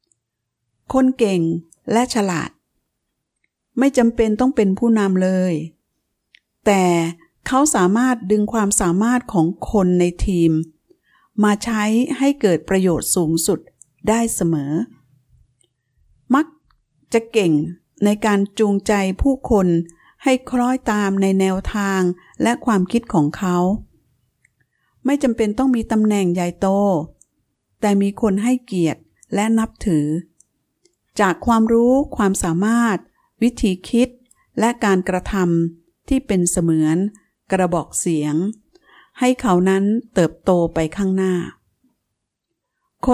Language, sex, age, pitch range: Thai, female, 60-79, 175-235 Hz